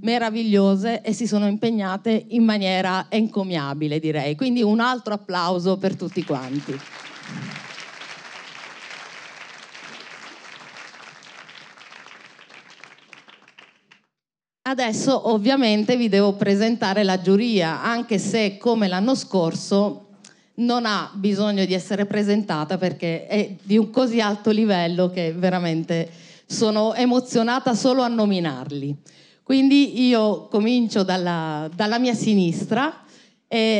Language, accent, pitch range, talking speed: Italian, native, 185-235 Hz, 100 wpm